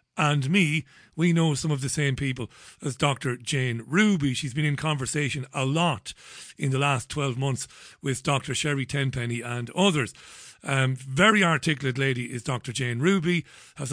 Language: English